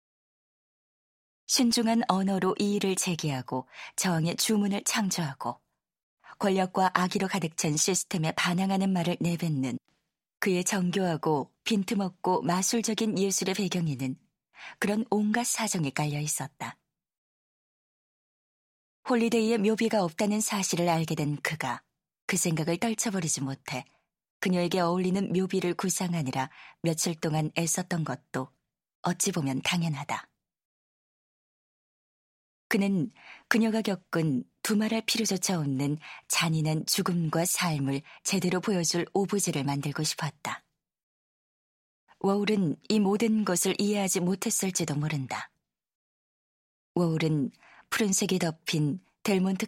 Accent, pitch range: native, 155-200 Hz